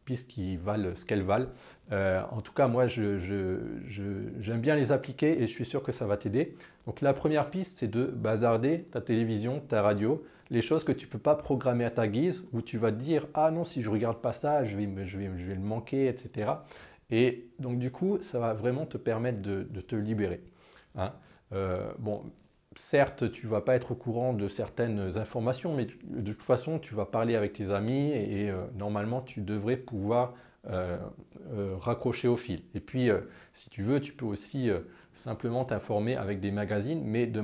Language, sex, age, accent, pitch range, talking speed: French, male, 40-59, French, 105-130 Hz, 215 wpm